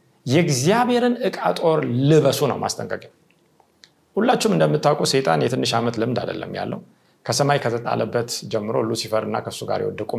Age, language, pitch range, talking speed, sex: 30-49, Amharic, 125-175 Hz, 125 wpm, male